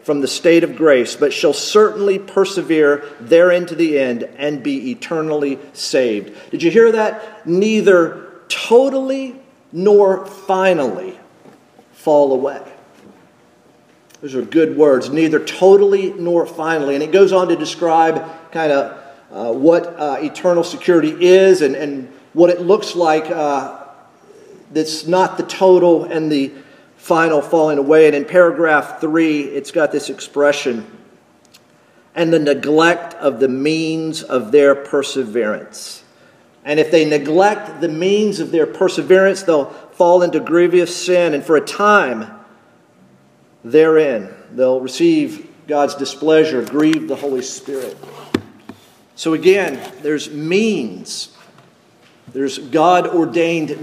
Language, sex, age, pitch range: English, male, 50-69, 145-185 Hz